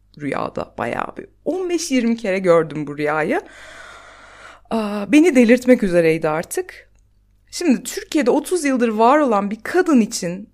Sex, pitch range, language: female, 200-280 Hz, Turkish